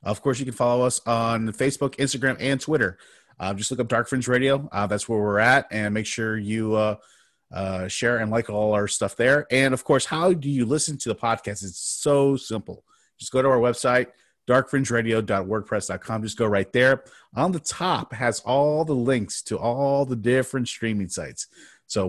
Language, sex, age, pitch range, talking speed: English, male, 30-49, 105-130 Hz, 200 wpm